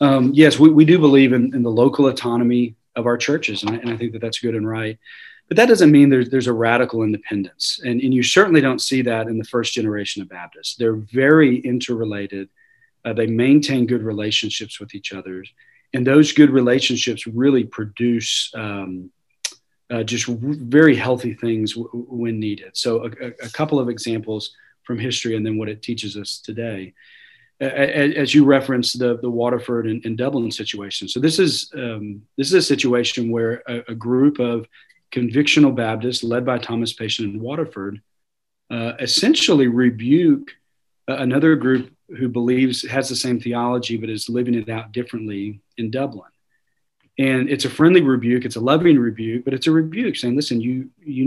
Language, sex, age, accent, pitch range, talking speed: English, male, 40-59, American, 115-135 Hz, 185 wpm